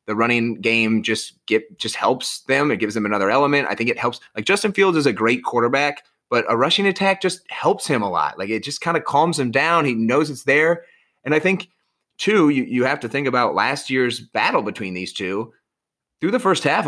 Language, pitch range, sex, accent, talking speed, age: English, 110-150 Hz, male, American, 230 wpm, 30-49